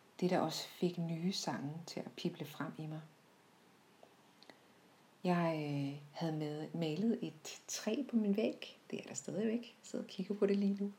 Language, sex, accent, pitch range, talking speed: Danish, female, native, 160-205 Hz, 175 wpm